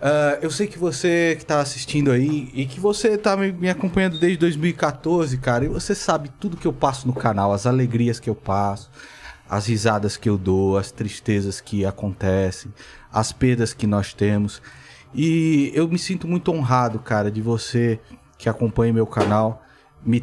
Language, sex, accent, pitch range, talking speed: Portuguese, male, Brazilian, 105-130 Hz, 180 wpm